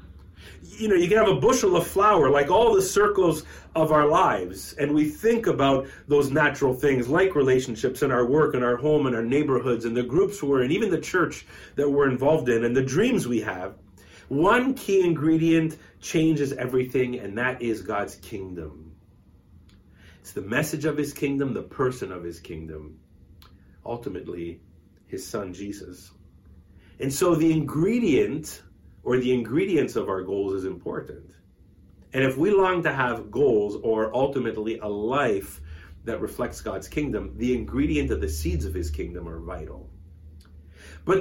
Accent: American